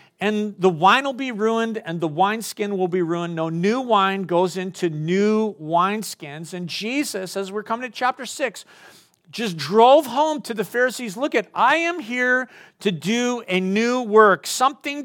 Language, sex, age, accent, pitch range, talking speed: English, male, 50-69, American, 170-225 Hz, 175 wpm